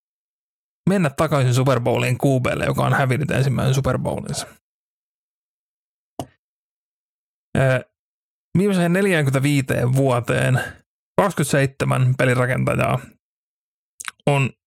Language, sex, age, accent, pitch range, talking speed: Finnish, male, 30-49, native, 125-140 Hz, 55 wpm